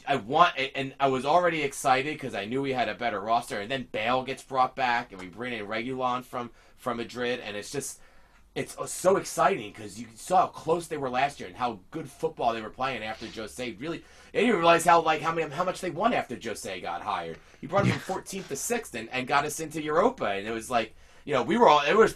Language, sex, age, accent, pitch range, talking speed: English, male, 30-49, American, 105-170 Hz, 250 wpm